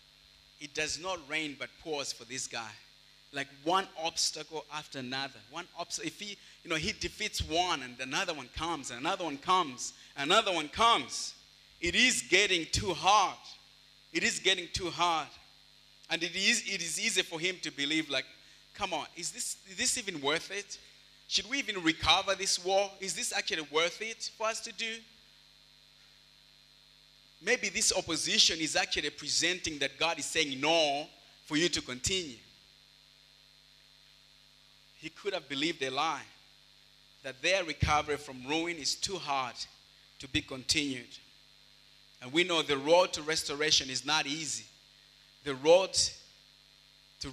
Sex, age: male, 30-49